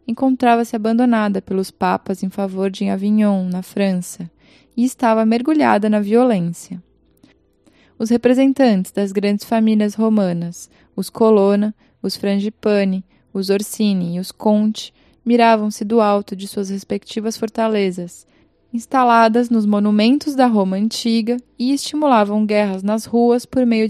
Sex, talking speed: female, 125 wpm